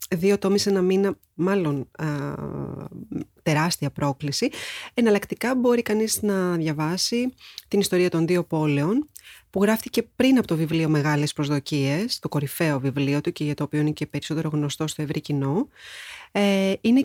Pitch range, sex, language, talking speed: 160-210 Hz, female, English, 150 wpm